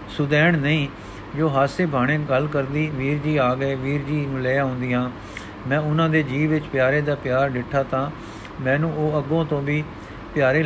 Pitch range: 125-155 Hz